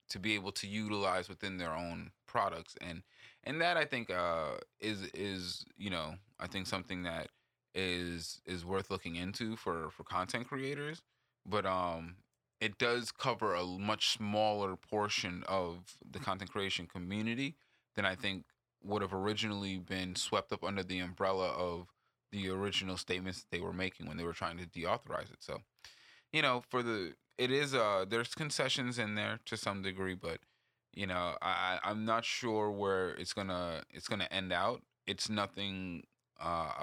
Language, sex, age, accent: English, male, 20-39, American